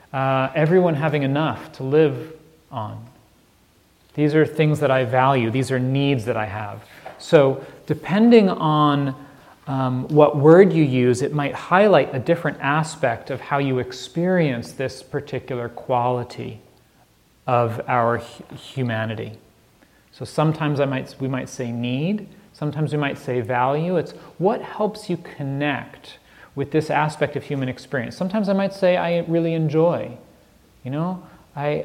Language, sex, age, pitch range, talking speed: English, male, 30-49, 120-155 Hz, 145 wpm